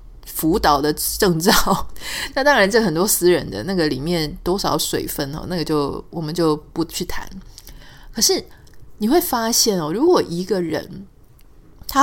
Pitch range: 165-225 Hz